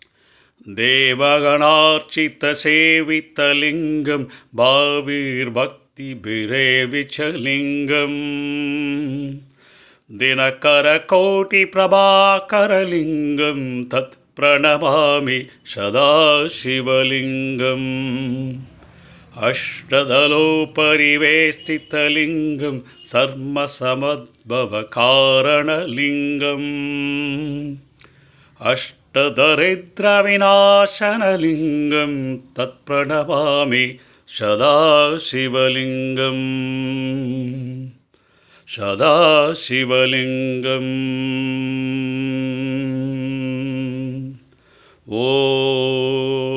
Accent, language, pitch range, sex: native, Tamil, 130-145 Hz, male